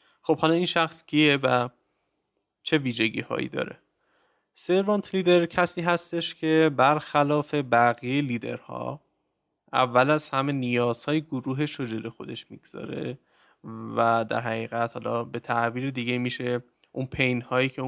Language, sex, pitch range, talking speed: Persian, male, 125-150 Hz, 120 wpm